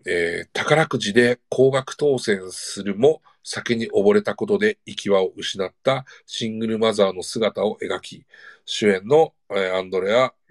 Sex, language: male, Japanese